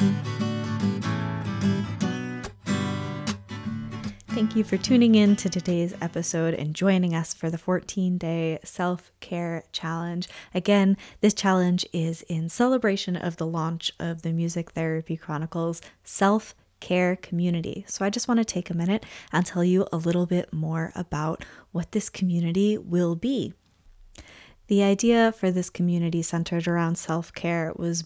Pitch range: 165-190 Hz